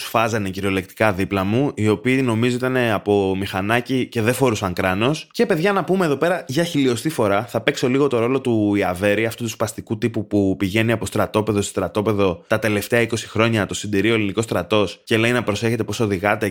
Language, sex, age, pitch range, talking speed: Greek, male, 20-39, 105-150 Hz, 200 wpm